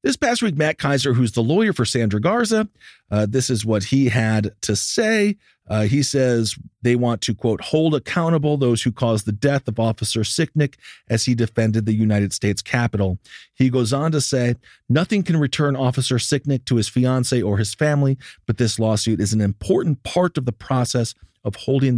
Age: 40-59